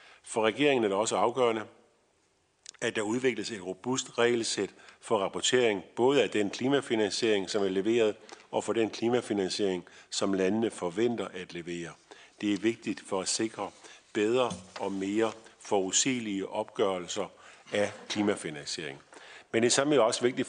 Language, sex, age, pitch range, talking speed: Danish, male, 50-69, 100-120 Hz, 140 wpm